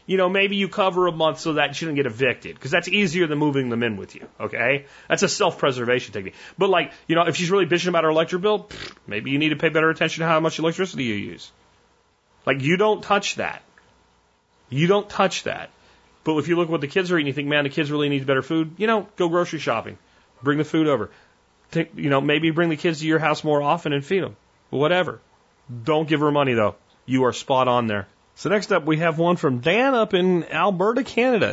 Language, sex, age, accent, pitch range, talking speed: English, male, 30-49, American, 120-170 Hz, 240 wpm